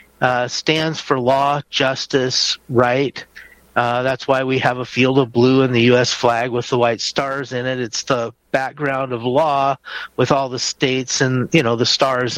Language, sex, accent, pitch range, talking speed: English, male, American, 120-150 Hz, 190 wpm